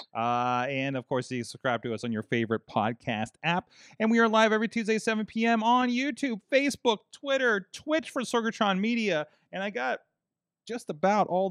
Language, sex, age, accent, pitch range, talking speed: English, male, 30-49, American, 125-185 Hz, 185 wpm